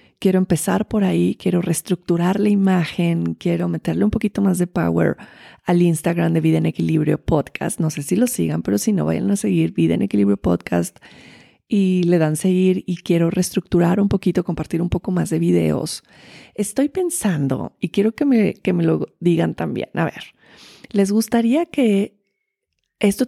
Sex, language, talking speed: female, Spanish, 175 wpm